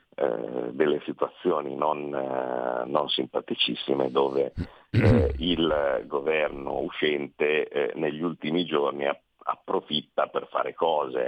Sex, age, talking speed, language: male, 50-69, 100 wpm, Italian